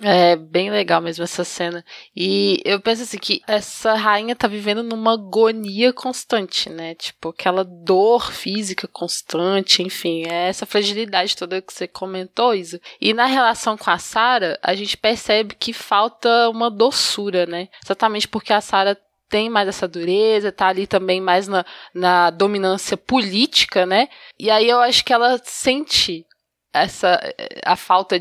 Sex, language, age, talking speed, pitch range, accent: female, Portuguese, 20-39, 155 wpm, 185-230 Hz, Brazilian